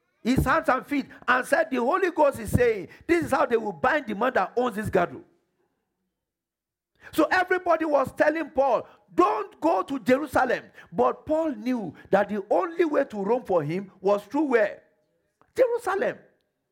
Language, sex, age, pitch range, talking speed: English, male, 50-69, 200-280 Hz, 170 wpm